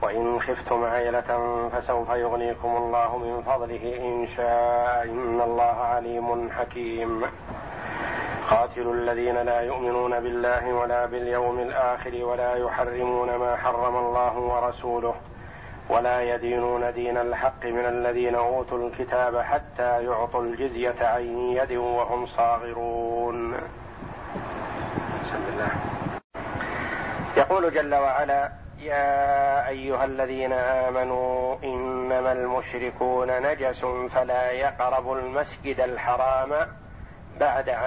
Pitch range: 120-130 Hz